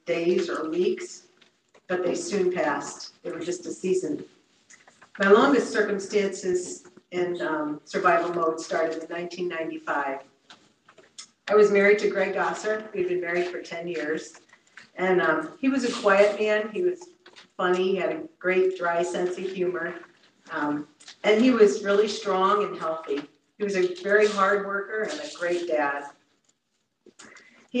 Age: 50-69